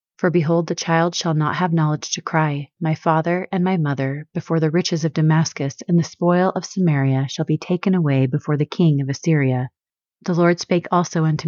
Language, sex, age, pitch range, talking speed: English, female, 30-49, 145-175 Hz, 205 wpm